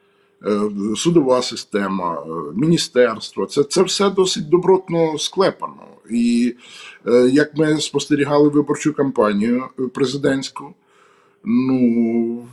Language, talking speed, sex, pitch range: Ukrainian, 80 wpm, male, 125-165 Hz